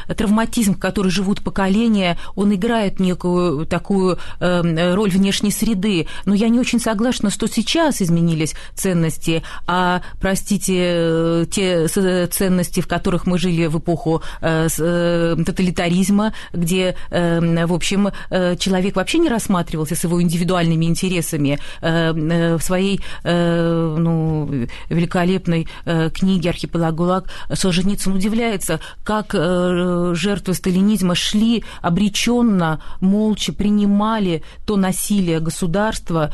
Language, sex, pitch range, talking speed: Russian, female, 165-200 Hz, 100 wpm